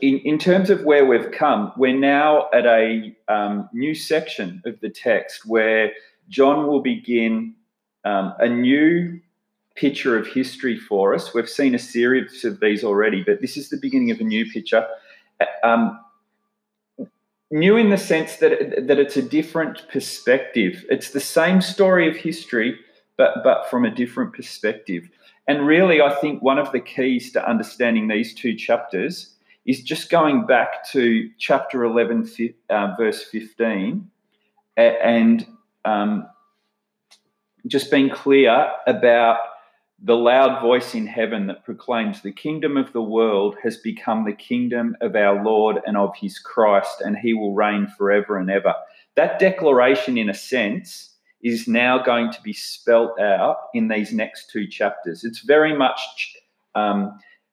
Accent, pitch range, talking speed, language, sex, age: Australian, 115-170 Hz, 155 wpm, English, male, 30-49